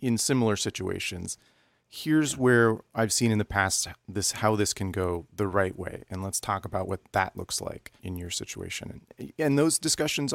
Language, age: English, 30-49